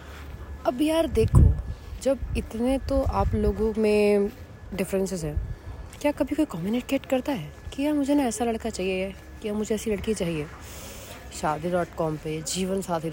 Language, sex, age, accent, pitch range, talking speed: Hindi, female, 30-49, native, 155-210 Hz, 165 wpm